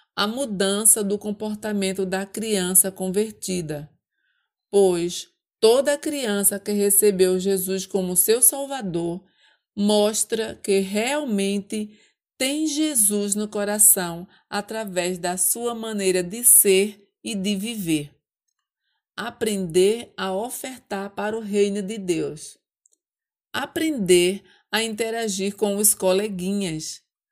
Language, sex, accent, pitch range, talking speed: Portuguese, female, Brazilian, 190-225 Hz, 100 wpm